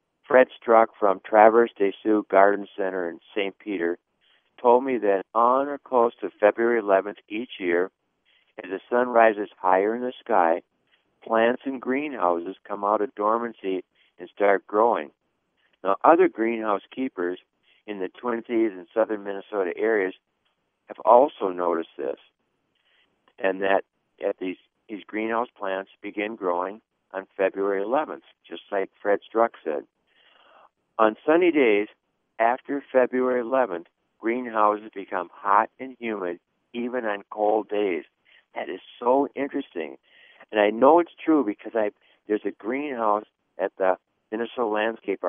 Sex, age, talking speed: male, 60-79, 140 wpm